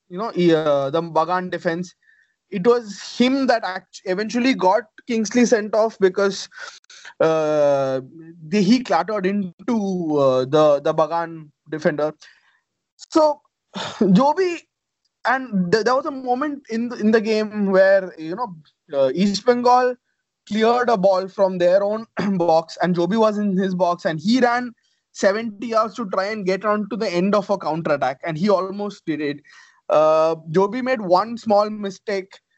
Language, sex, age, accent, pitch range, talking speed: English, male, 20-39, Indian, 175-240 Hz, 150 wpm